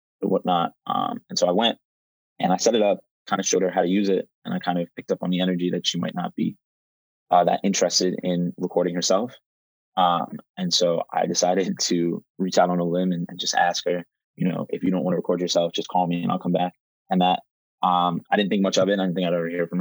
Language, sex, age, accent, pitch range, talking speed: English, male, 20-39, American, 85-95 Hz, 265 wpm